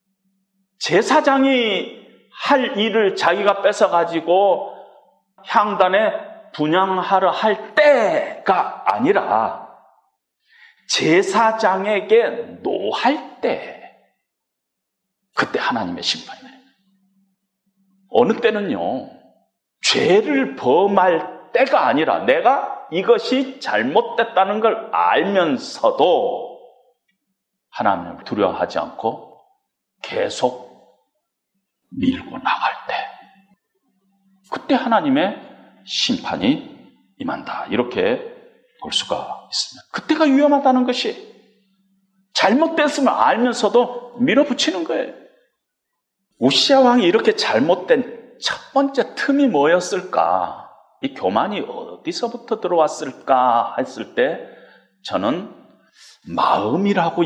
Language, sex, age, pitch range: Korean, male, 40-59, 200-315 Hz